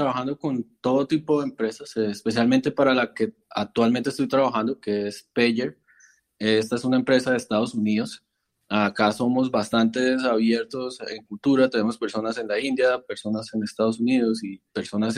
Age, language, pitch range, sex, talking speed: 20-39, Spanish, 110-130 Hz, male, 160 wpm